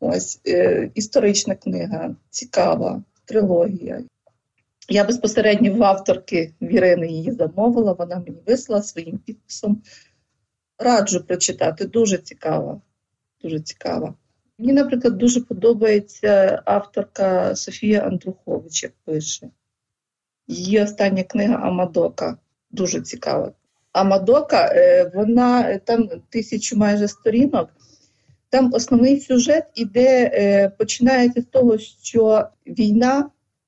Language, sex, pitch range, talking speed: English, female, 190-245 Hz, 95 wpm